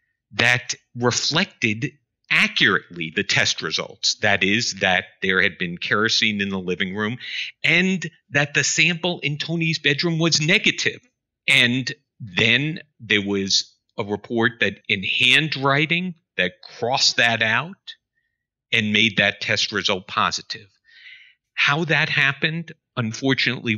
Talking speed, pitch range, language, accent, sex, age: 125 wpm, 105-170 Hz, English, American, male, 50-69